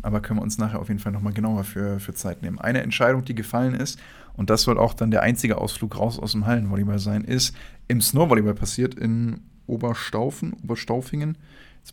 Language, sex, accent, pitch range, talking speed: German, male, German, 105-125 Hz, 205 wpm